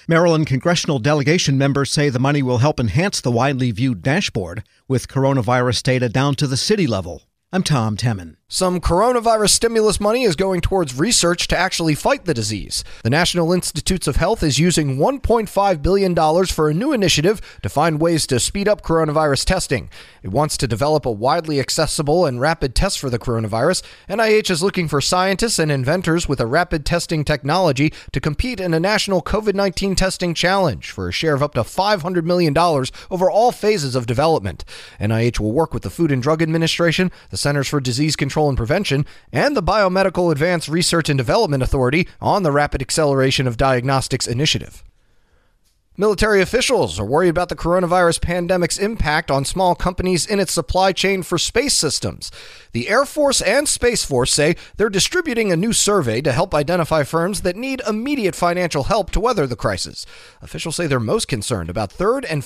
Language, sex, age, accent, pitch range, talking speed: English, male, 30-49, American, 135-185 Hz, 180 wpm